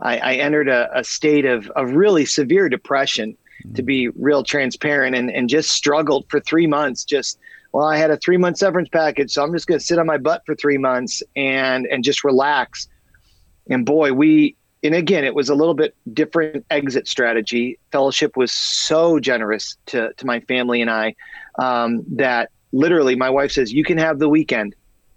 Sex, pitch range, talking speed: male, 135-165 Hz, 195 wpm